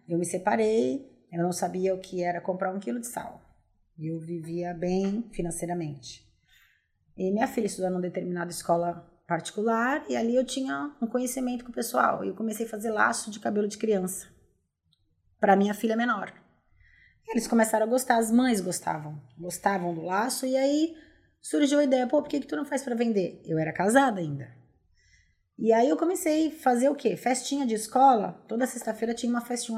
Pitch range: 175-235 Hz